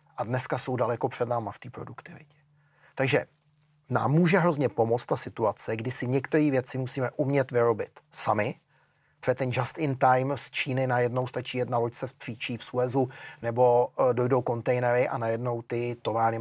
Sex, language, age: male, Czech, 40-59